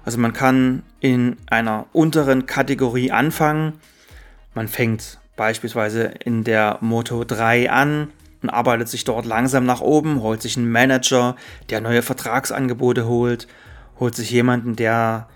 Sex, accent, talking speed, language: male, German, 135 wpm, German